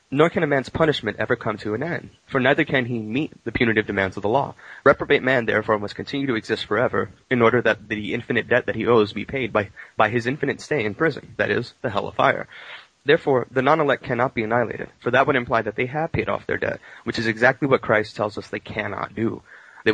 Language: English